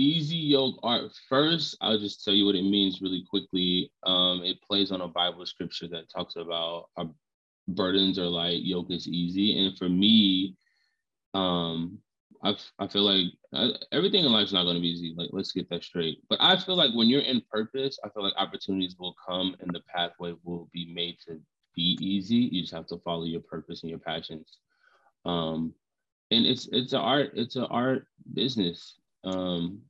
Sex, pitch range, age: male, 85-105 Hz, 20-39